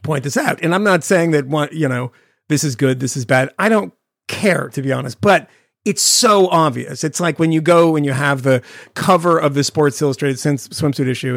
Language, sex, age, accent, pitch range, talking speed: English, male, 40-59, American, 135-180 Hz, 230 wpm